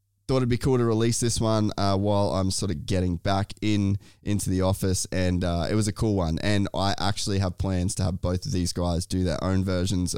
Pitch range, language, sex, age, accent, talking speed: 90-105 Hz, English, male, 20-39, Australian, 240 wpm